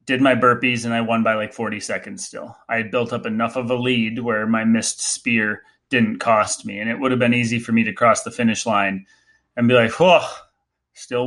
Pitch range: 115-130 Hz